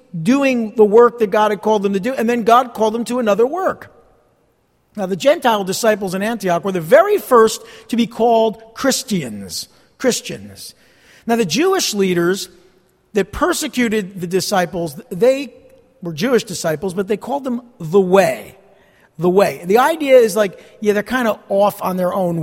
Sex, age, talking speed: male, 50-69, 175 wpm